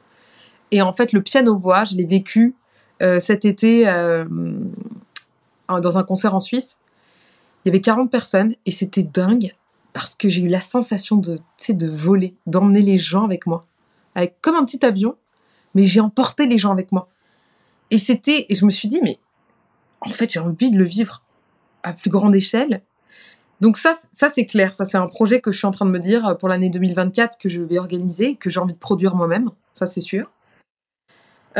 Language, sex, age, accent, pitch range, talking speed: French, female, 20-39, French, 180-220 Hz, 200 wpm